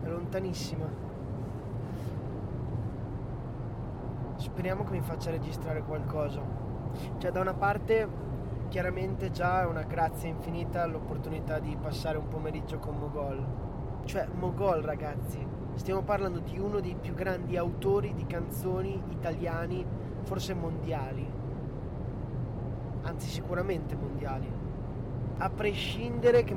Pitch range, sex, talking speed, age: 120-155 Hz, male, 105 wpm, 20-39